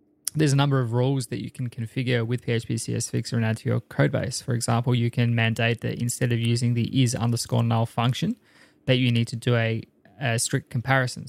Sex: male